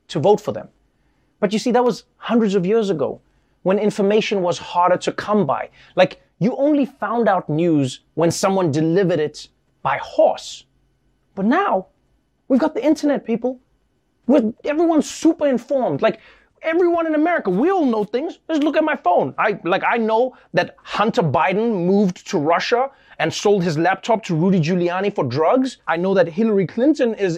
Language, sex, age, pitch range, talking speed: English, male, 30-49, 170-245 Hz, 180 wpm